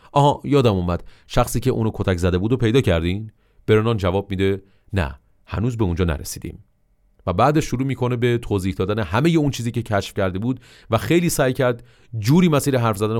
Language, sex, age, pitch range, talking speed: Persian, male, 30-49, 100-130 Hz, 195 wpm